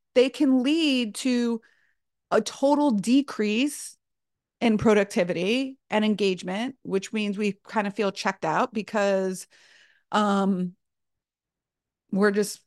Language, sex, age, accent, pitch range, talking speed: English, female, 30-49, American, 200-255 Hz, 110 wpm